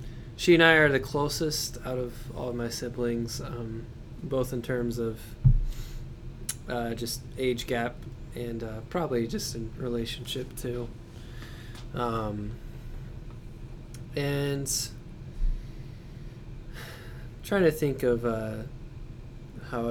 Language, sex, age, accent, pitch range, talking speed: English, male, 20-39, American, 120-130 Hz, 115 wpm